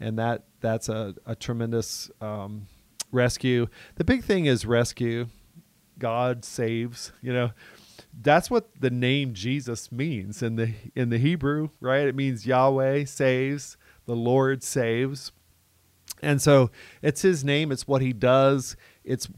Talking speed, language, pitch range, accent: 140 wpm, English, 120-135 Hz, American